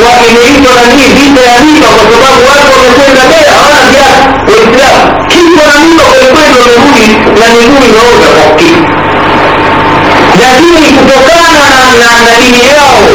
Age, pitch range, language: 50-69, 225-280 Hz, Swahili